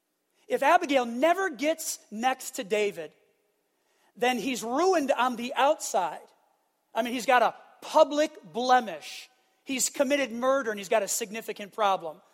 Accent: American